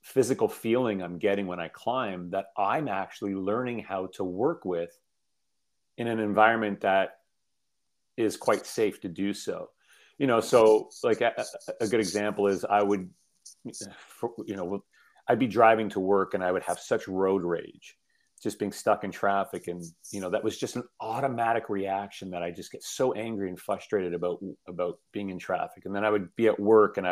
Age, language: 40-59, English